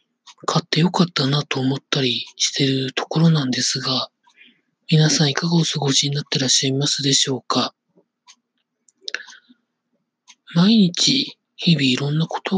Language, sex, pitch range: Japanese, male, 145-215 Hz